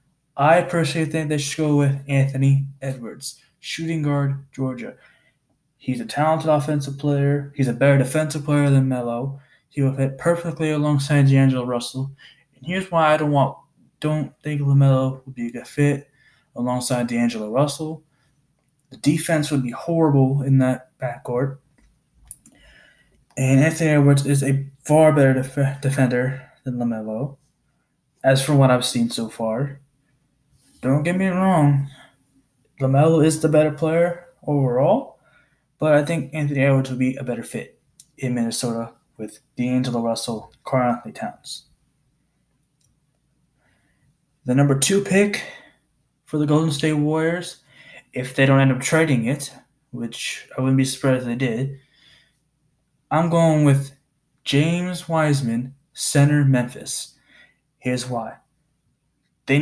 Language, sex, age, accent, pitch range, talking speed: English, male, 20-39, American, 130-150 Hz, 135 wpm